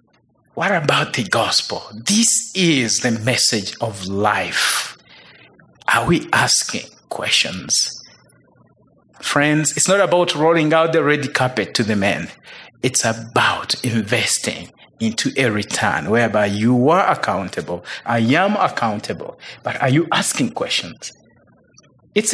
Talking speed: 120 wpm